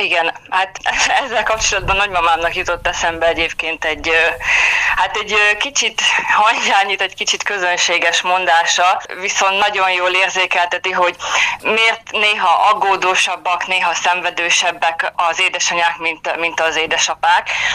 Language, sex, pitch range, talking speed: Hungarian, female, 170-205 Hz, 110 wpm